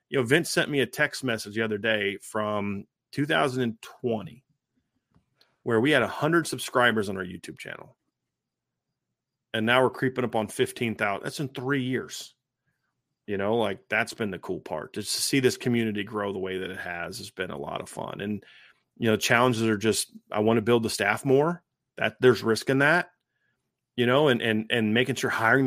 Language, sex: English, male